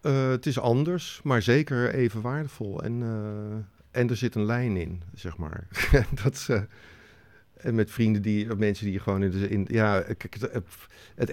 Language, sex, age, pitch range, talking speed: Dutch, male, 50-69, 90-110 Hz, 180 wpm